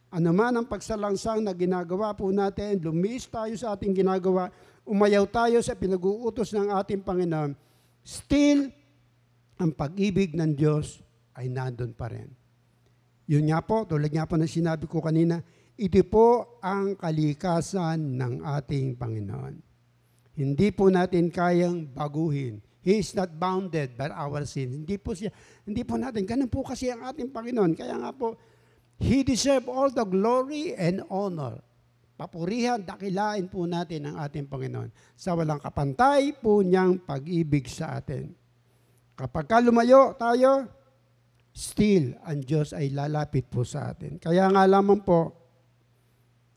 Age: 60-79